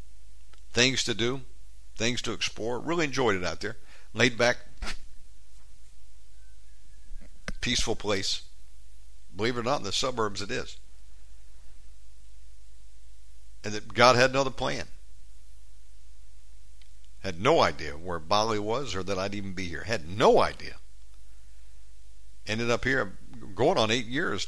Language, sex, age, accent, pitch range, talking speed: English, male, 60-79, American, 95-115 Hz, 130 wpm